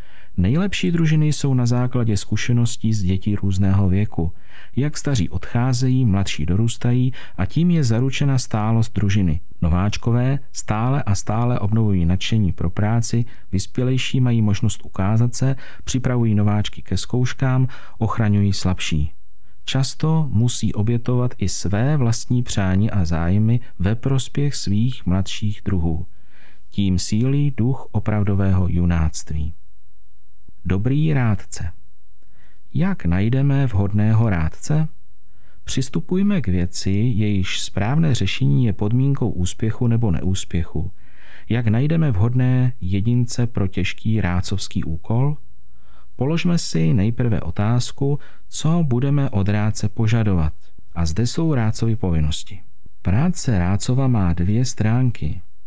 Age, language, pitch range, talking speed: 40-59, Czech, 95-125 Hz, 110 wpm